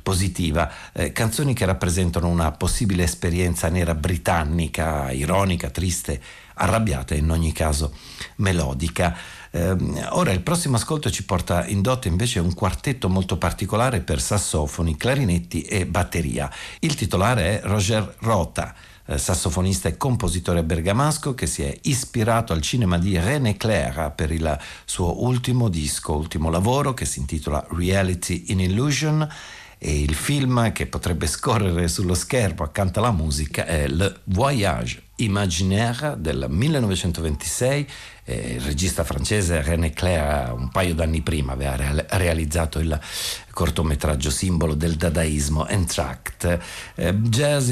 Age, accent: 60-79, native